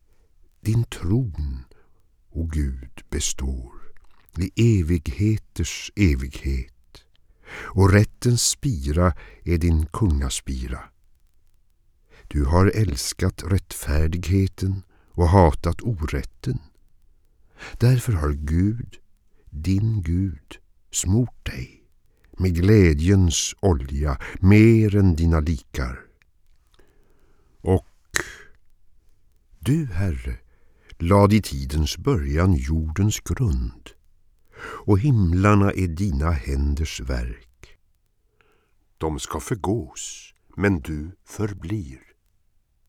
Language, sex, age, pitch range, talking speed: Swedish, male, 60-79, 75-100 Hz, 80 wpm